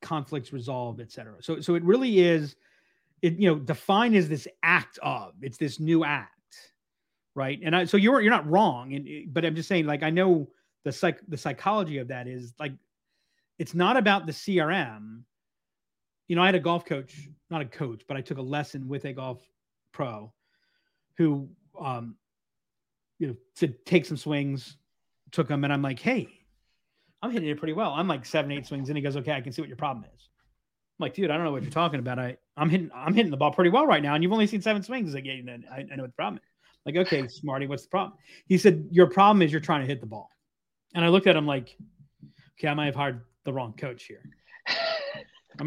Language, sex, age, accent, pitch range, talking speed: English, male, 30-49, American, 140-180 Hz, 235 wpm